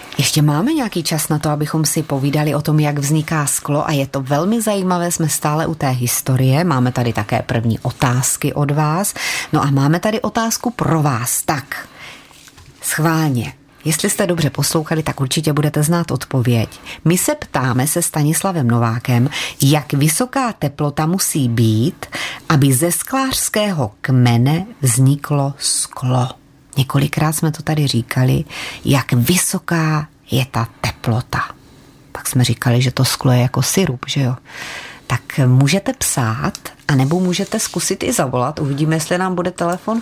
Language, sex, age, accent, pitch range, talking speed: Czech, female, 30-49, native, 135-175 Hz, 150 wpm